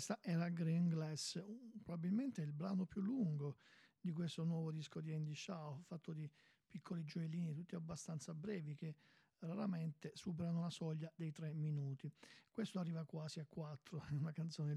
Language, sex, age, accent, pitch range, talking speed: Italian, male, 50-69, native, 155-180 Hz, 165 wpm